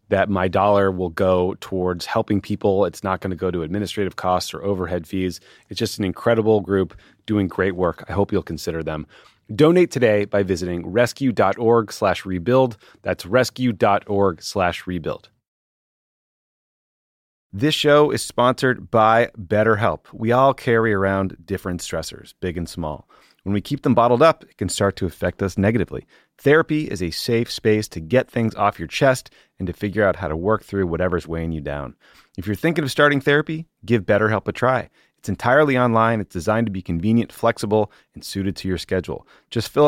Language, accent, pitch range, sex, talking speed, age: English, American, 90-120 Hz, male, 180 wpm, 30-49